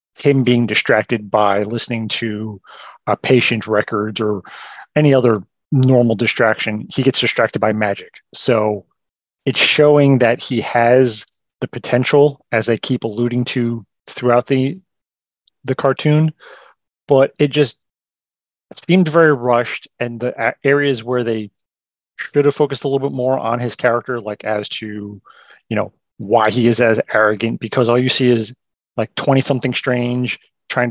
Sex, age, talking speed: male, 30-49, 150 wpm